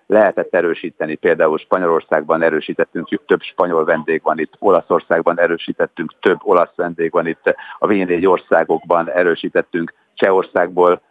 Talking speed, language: 120 wpm, Hungarian